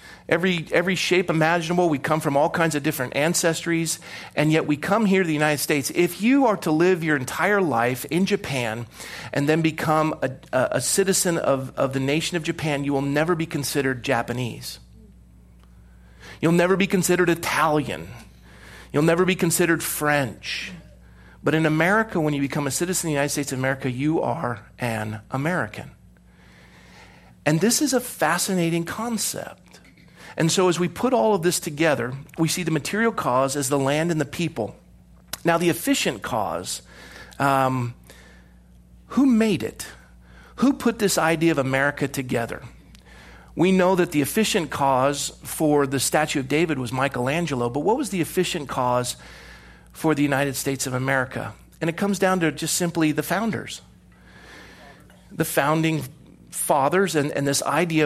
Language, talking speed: English, 165 wpm